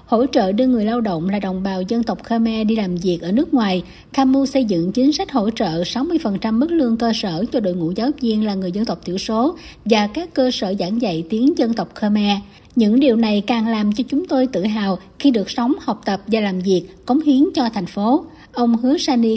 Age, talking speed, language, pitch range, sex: 60-79, 240 wpm, Vietnamese, 205-255 Hz, female